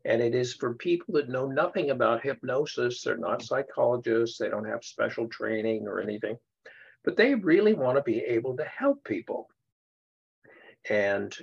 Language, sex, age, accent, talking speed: English, male, 60-79, American, 165 wpm